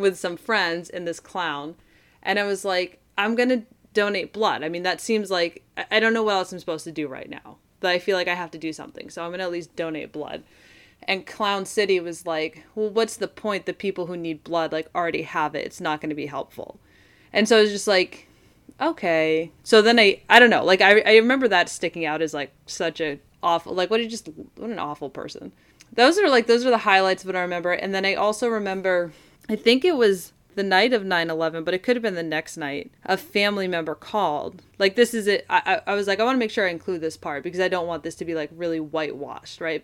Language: English